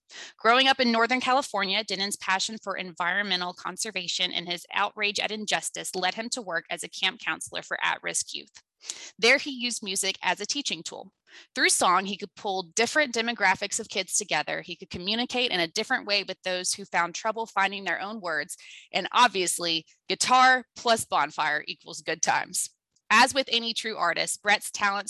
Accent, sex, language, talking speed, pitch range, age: American, female, English, 180 wpm, 180-230 Hz, 20-39